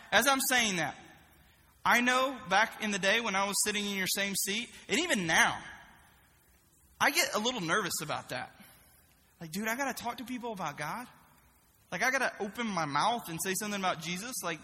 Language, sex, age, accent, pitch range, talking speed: English, male, 20-39, American, 180-240 Hz, 210 wpm